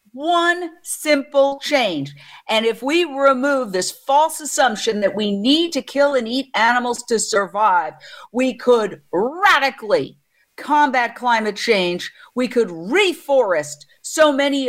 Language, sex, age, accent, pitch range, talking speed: English, female, 50-69, American, 215-265 Hz, 125 wpm